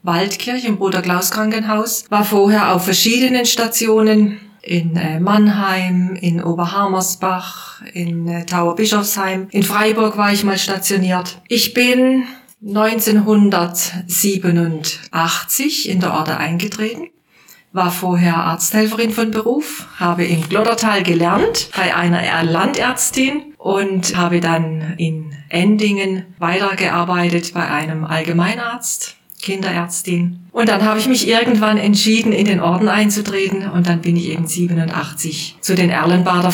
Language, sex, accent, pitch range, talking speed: German, female, German, 175-210 Hz, 115 wpm